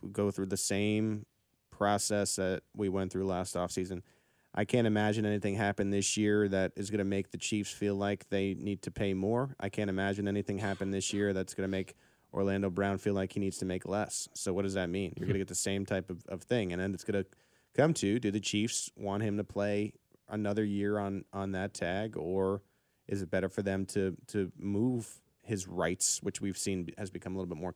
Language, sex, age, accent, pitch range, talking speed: English, male, 30-49, American, 95-105 Hz, 235 wpm